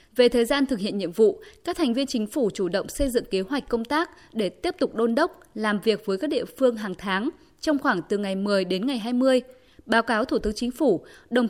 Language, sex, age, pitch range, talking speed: Vietnamese, female, 20-39, 205-275 Hz, 250 wpm